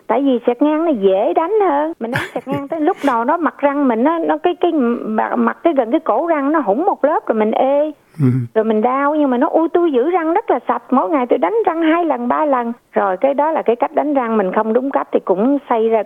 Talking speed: 275 wpm